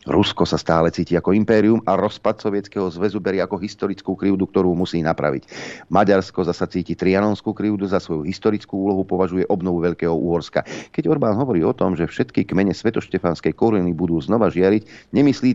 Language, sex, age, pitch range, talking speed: Slovak, male, 40-59, 85-110 Hz, 170 wpm